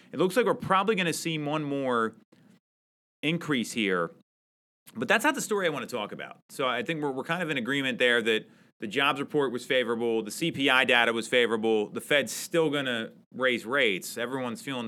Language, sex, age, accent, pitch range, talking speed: English, male, 30-49, American, 115-165 Hz, 210 wpm